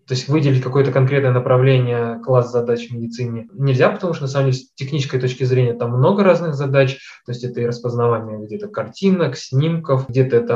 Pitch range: 120-135 Hz